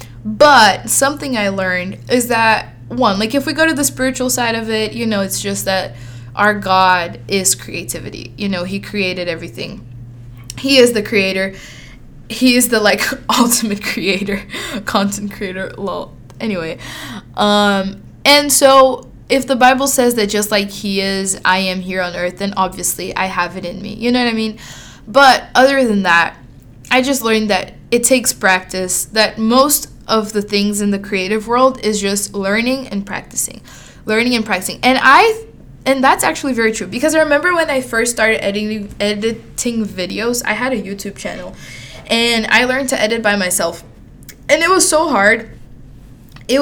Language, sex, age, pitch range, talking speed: English, female, 20-39, 190-245 Hz, 175 wpm